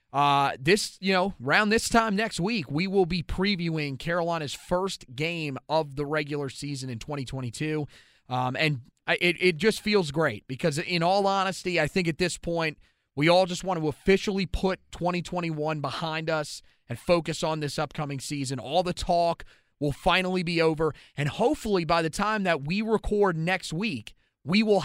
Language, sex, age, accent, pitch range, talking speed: English, male, 30-49, American, 150-180 Hz, 175 wpm